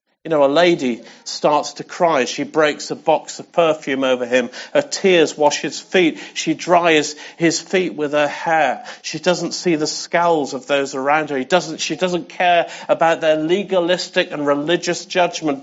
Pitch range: 150-190 Hz